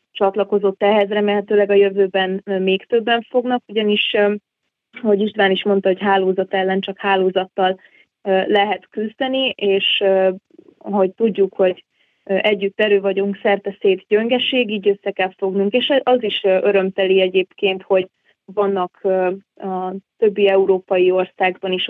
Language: Hungarian